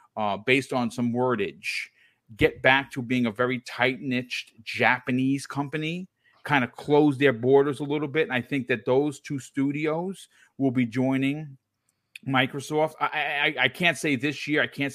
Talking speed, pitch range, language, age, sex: 170 wpm, 115-140 Hz, English, 40-59, male